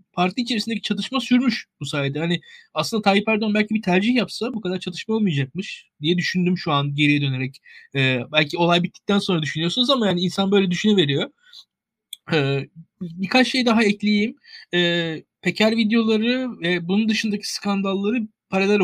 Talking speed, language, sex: 155 wpm, Turkish, male